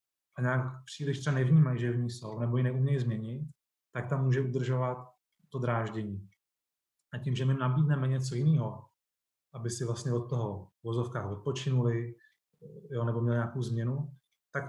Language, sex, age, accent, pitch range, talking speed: Czech, male, 20-39, native, 115-135 Hz, 160 wpm